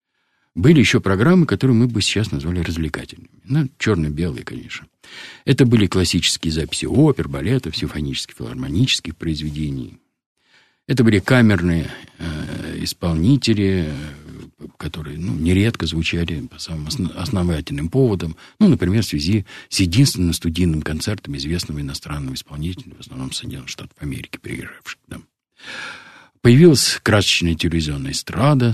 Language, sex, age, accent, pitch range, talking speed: Russian, male, 50-69, native, 80-115 Hz, 115 wpm